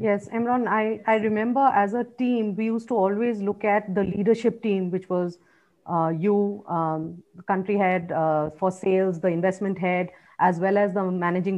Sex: female